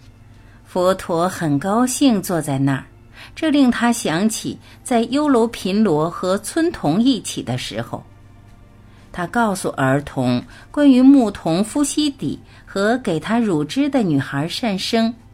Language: Chinese